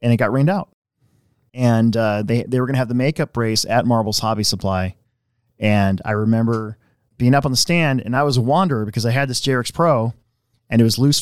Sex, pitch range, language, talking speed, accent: male, 115-135 Hz, English, 230 wpm, American